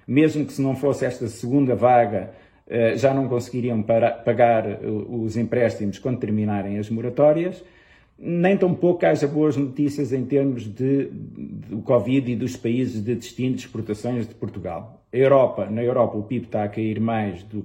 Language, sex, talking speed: Portuguese, male, 165 wpm